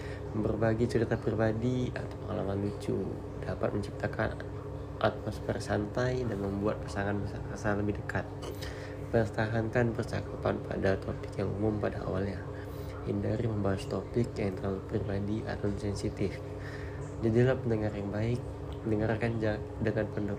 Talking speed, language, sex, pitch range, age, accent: 115 wpm, Indonesian, male, 100-115 Hz, 20-39, native